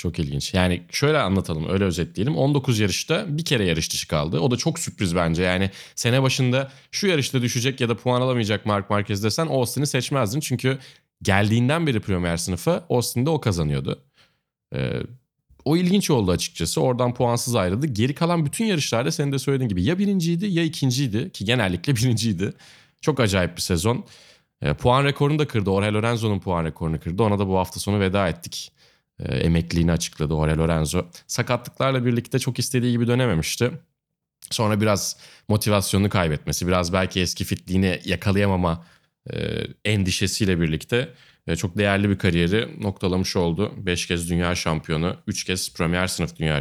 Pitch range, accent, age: 90-130 Hz, native, 30-49